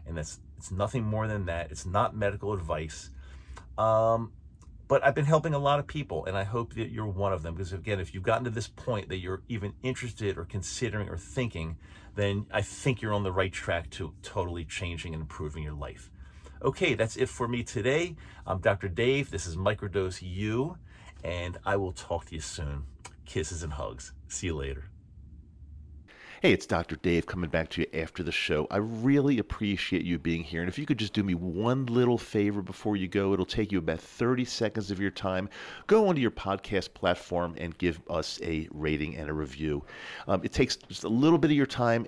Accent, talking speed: American, 210 wpm